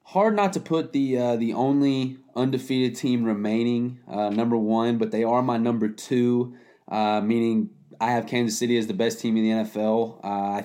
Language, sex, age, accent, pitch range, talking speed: English, male, 20-39, American, 115-140 Hz, 195 wpm